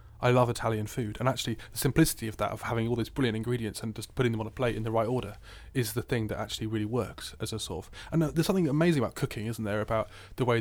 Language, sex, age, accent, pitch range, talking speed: English, male, 30-49, British, 110-130 Hz, 275 wpm